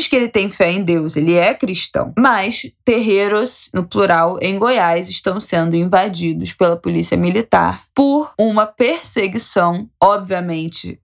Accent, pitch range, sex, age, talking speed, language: Brazilian, 170-210 Hz, female, 20-39, 135 wpm, Portuguese